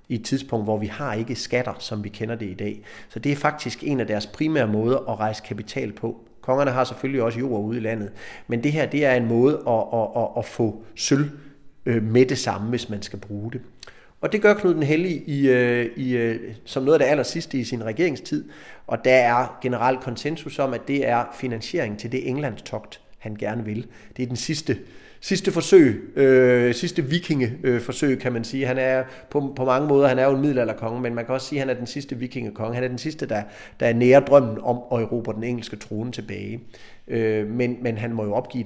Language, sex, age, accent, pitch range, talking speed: Danish, male, 30-49, native, 110-130 Hz, 215 wpm